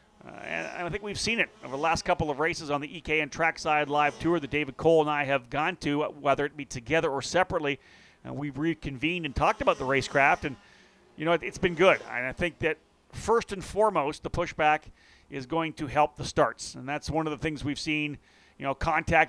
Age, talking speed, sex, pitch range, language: 40-59, 235 wpm, male, 145-170 Hz, English